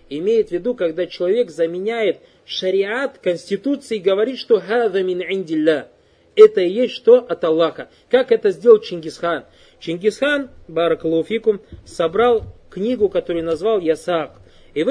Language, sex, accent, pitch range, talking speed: Russian, male, native, 170-250 Hz, 125 wpm